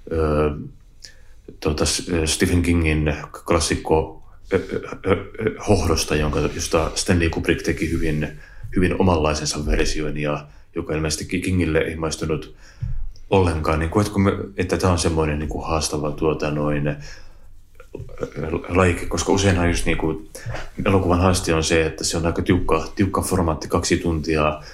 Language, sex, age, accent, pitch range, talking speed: Finnish, male, 30-49, native, 75-90 Hz, 115 wpm